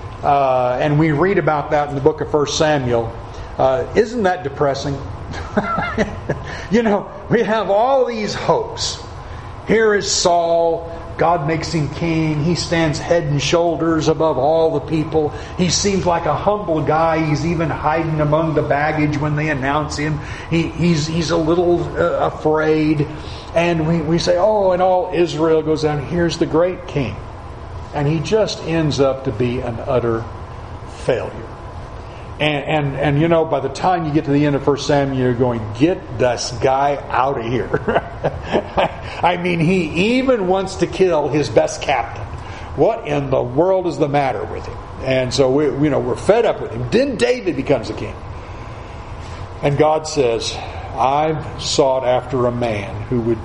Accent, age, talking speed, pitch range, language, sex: American, 40-59, 175 wpm, 120-165 Hz, English, male